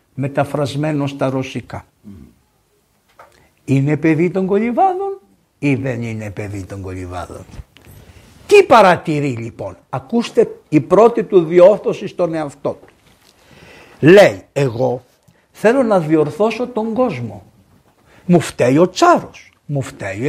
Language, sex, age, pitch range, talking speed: Greek, male, 60-79, 125-190 Hz, 110 wpm